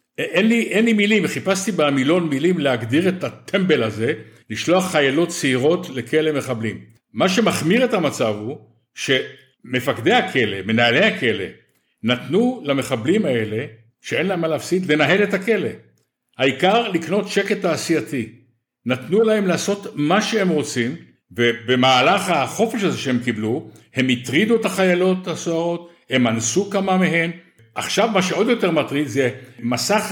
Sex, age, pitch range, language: male, 60-79, 135-190 Hz, Hebrew